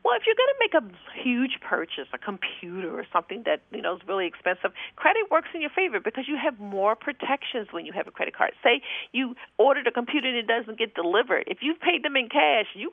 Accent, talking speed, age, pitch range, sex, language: American, 240 wpm, 50-69, 185-315 Hz, female, English